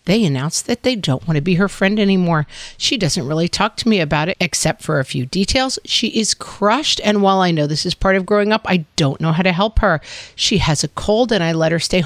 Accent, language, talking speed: American, English, 265 wpm